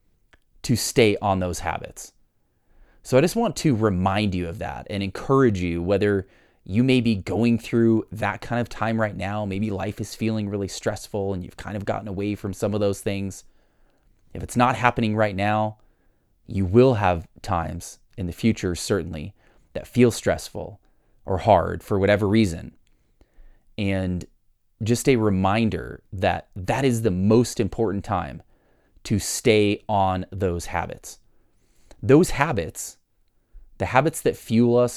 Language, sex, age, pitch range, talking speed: English, male, 30-49, 95-120 Hz, 155 wpm